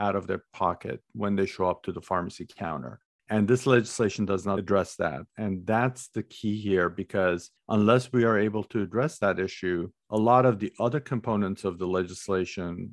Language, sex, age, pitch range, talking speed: English, male, 50-69, 100-125 Hz, 195 wpm